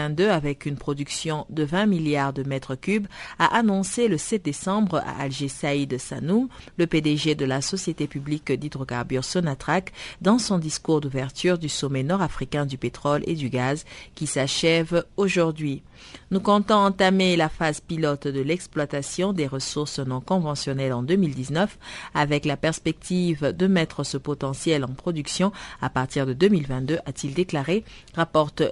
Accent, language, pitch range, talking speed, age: French, French, 145-185 Hz, 150 wpm, 50-69